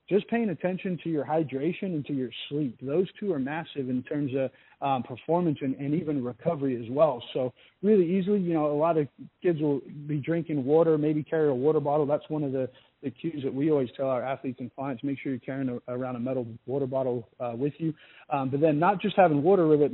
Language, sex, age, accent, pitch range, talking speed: English, male, 40-59, American, 130-150 Hz, 235 wpm